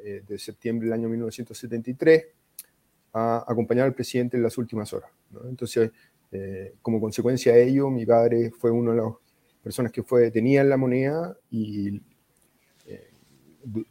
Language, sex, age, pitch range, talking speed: Spanish, male, 30-49, 110-135 Hz, 150 wpm